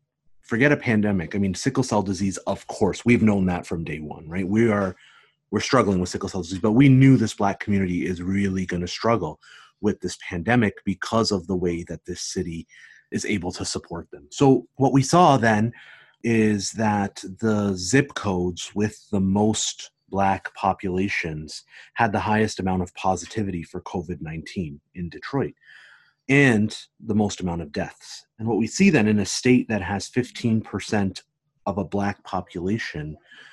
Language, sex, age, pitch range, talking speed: English, male, 30-49, 95-125 Hz, 175 wpm